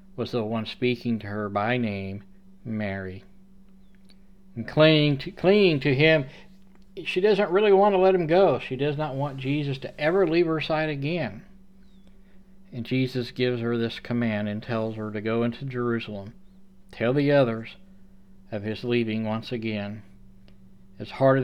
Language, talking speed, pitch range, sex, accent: English, 160 wpm, 100-140 Hz, male, American